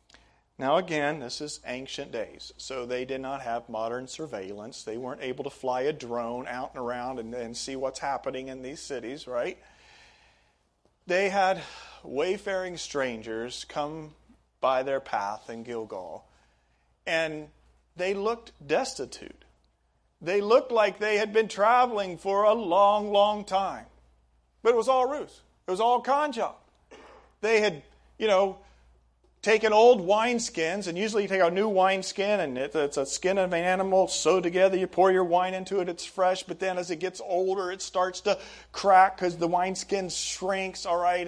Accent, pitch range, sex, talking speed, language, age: American, 135-200 Hz, male, 165 wpm, English, 40-59